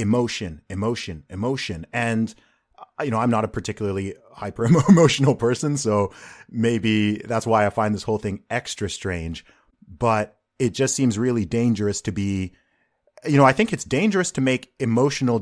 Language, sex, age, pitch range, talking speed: English, male, 30-49, 105-135 Hz, 155 wpm